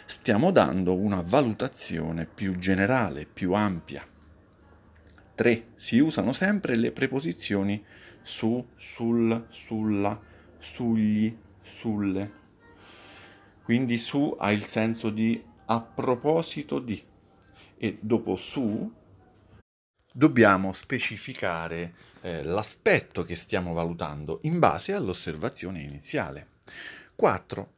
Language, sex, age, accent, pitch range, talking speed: Italian, male, 40-59, native, 90-115 Hz, 95 wpm